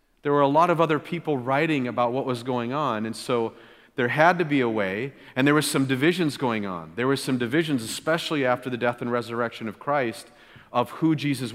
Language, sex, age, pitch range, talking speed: English, male, 40-59, 115-140 Hz, 225 wpm